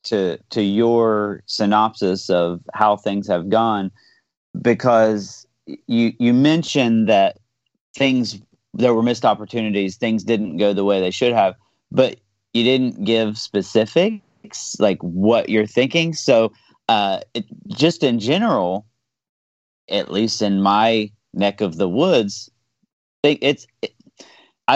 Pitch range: 95-120 Hz